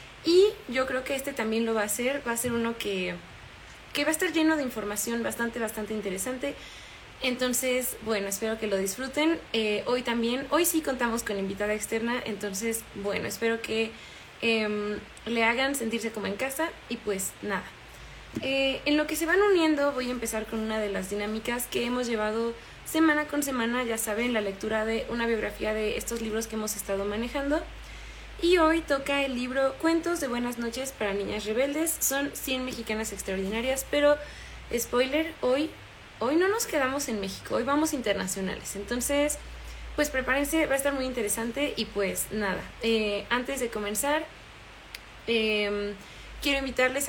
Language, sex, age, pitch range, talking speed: Spanish, female, 20-39, 215-270 Hz, 170 wpm